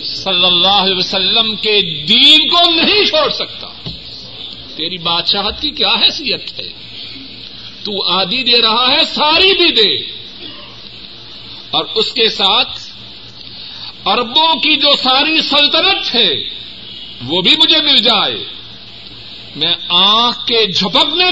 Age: 50-69